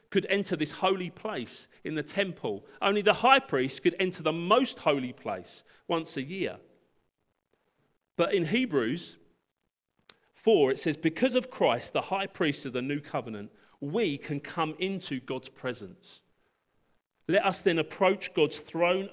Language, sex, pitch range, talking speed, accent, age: English, male, 145-195 Hz, 155 wpm, British, 40-59